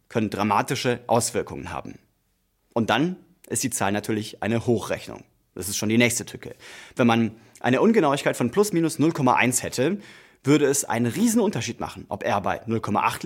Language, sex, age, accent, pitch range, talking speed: German, male, 30-49, German, 115-150 Hz, 165 wpm